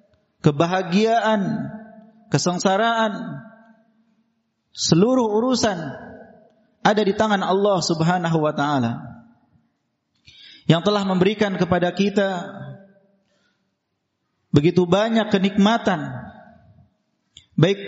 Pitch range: 175-215 Hz